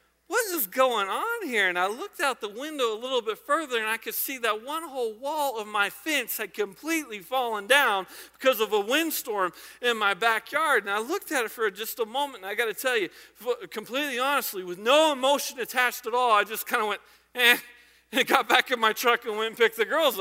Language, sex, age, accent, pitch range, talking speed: English, male, 40-59, American, 210-290 Hz, 230 wpm